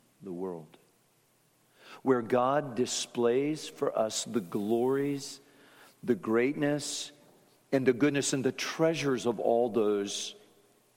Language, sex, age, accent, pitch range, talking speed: English, male, 50-69, American, 110-145 Hz, 110 wpm